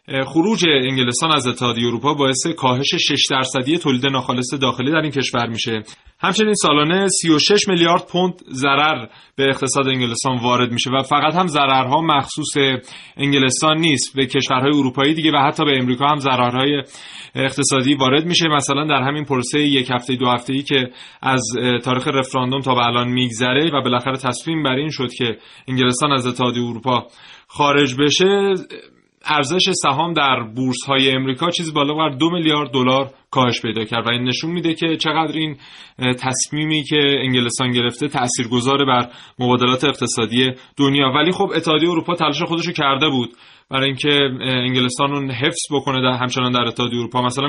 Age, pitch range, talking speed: 30-49, 125-150 Hz, 165 wpm